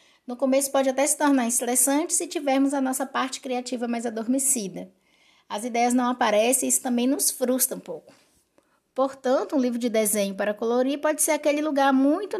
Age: 10-29